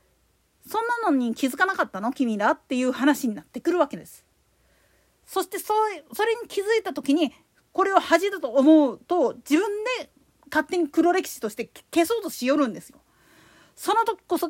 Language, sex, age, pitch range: Japanese, female, 40-59, 260-365 Hz